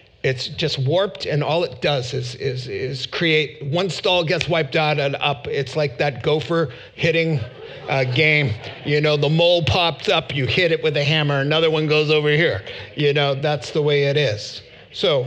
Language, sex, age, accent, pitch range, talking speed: English, male, 50-69, American, 130-170 Hz, 195 wpm